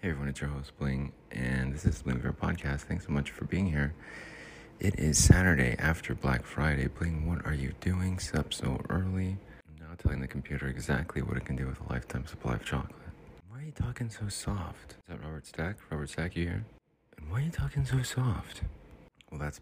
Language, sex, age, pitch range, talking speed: English, male, 30-49, 70-90 Hz, 215 wpm